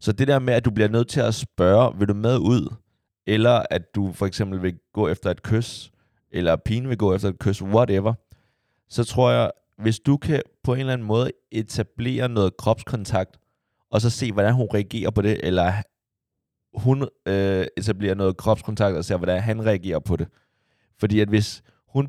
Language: Danish